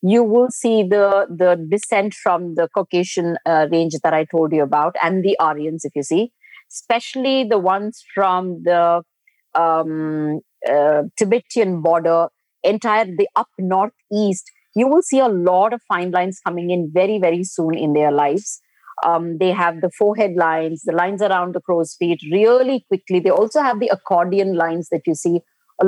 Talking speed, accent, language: 175 wpm, Indian, English